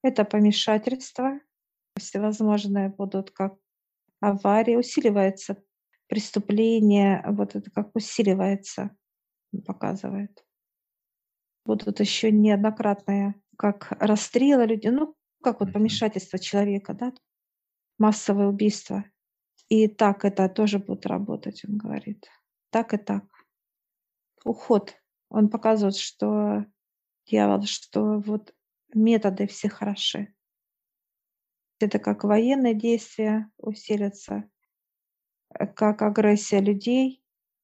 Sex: female